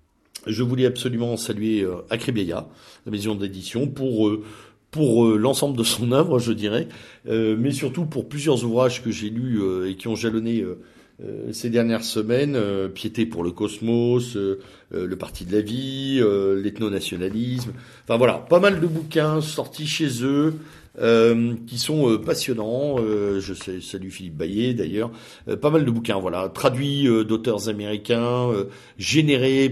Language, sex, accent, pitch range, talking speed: French, male, French, 105-135 Hz, 175 wpm